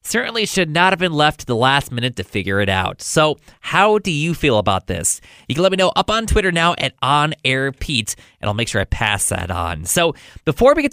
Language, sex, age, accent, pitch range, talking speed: English, male, 20-39, American, 145-220 Hz, 240 wpm